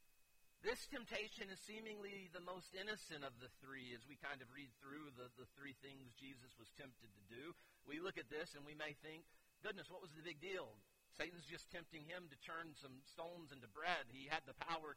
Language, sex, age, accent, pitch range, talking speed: English, male, 50-69, American, 145-175 Hz, 215 wpm